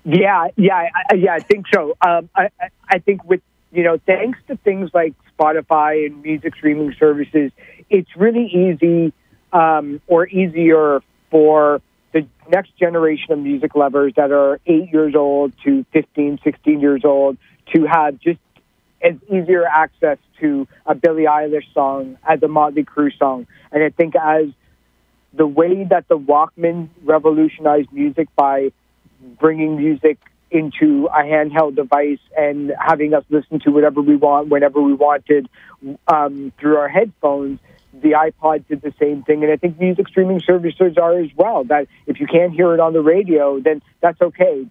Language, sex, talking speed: English, male, 160 wpm